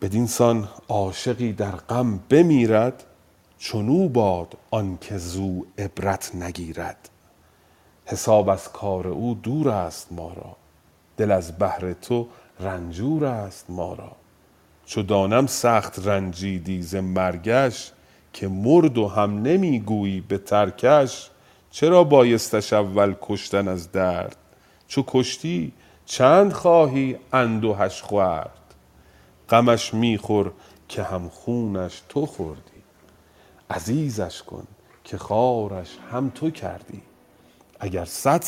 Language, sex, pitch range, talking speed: Persian, male, 90-120 Hz, 105 wpm